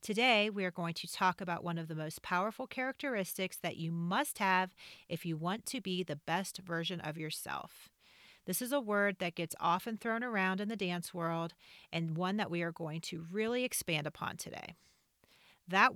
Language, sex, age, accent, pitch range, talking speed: English, female, 40-59, American, 170-205 Hz, 195 wpm